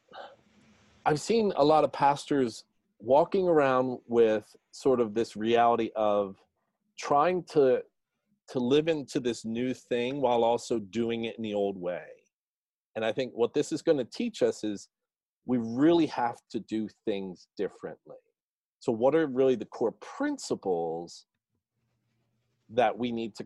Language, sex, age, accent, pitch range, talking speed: English, male, 40-59, American, 105-140 Hz, 150 wpm